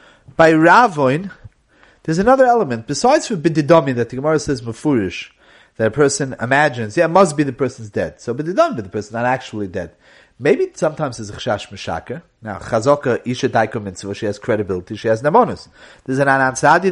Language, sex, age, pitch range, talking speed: English, male, 30-49, 125-185 Hz, 170 wpm